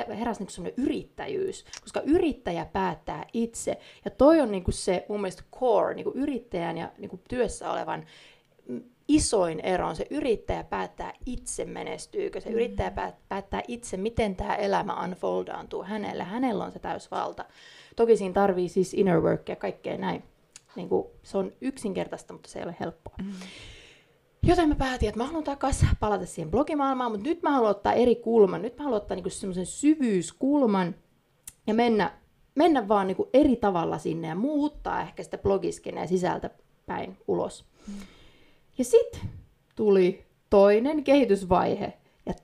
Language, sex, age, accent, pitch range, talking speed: Finnish, female, 30-49, native, 195-275 Hz, 145 wpm